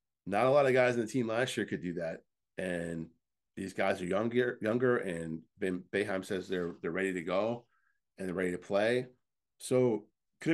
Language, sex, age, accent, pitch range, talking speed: English, male, 30-49, American, 105-135 Hz, 200 wpm